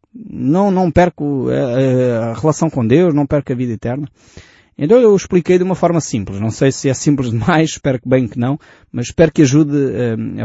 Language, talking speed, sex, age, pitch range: Portuguese, 205 wpm, male, 20-39, 115-160 Hz